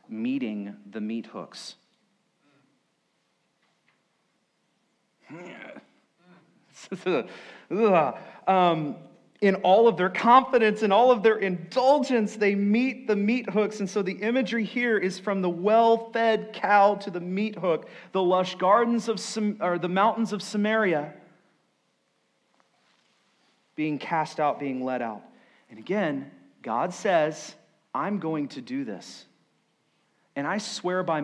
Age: 40-59